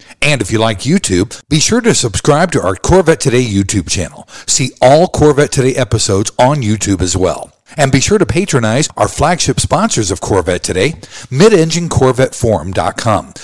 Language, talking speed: English, 160 wpm